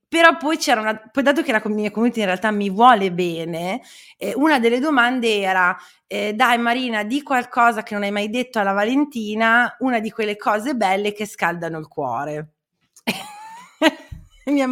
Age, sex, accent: 30-49, female, native